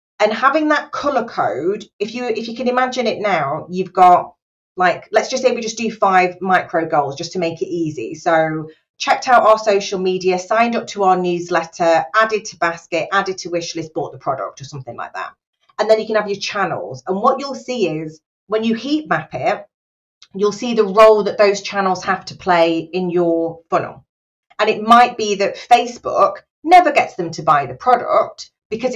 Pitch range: 170-220 Hz